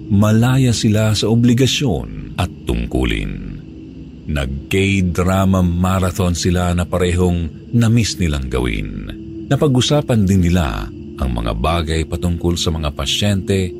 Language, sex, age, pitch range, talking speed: Filipino, male, 50-69, 75-110 Hz, 115 wpm